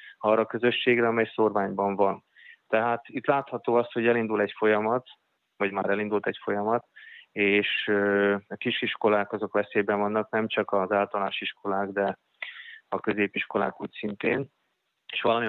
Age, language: 20-39, Hungarian